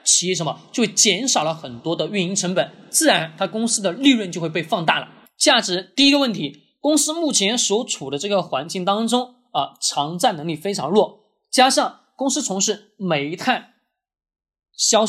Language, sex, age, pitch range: Chinese, male, 20-39, 165-235 Hz